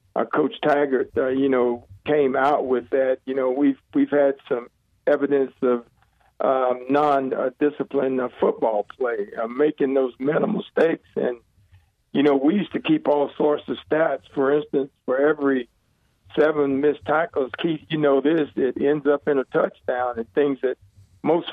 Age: 50-69